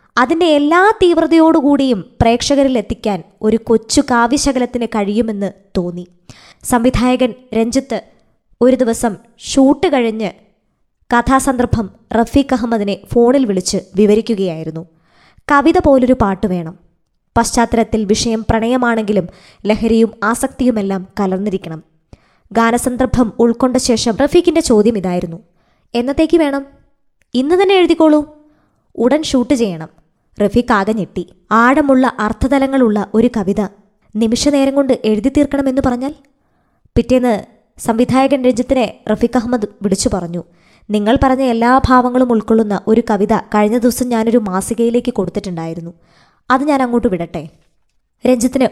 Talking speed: 100 wpm